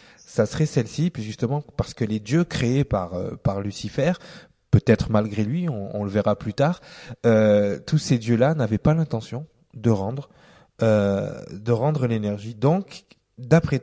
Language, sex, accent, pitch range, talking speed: French, male, French, 110-150 Hz, 160 wpm